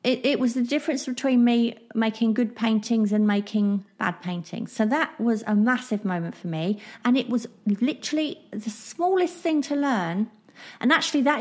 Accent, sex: British, female